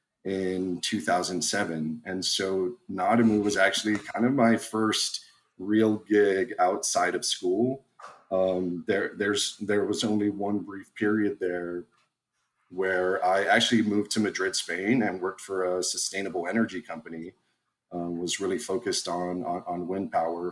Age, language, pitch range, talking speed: 40-59, English, 90-110 Hz, 145 wpm